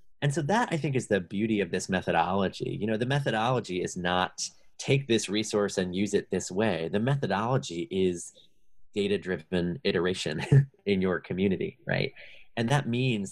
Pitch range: 90-125 Hz